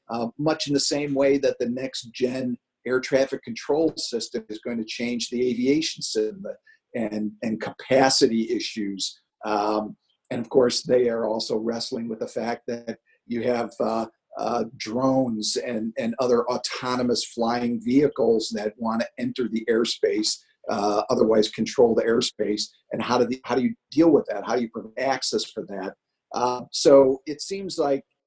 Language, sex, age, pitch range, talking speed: English, male, 50-69, 115-140 Hz, 170 wpm